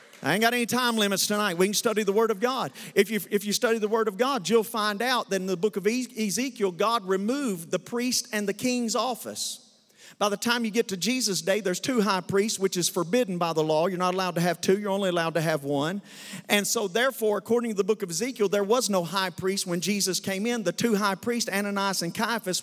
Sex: male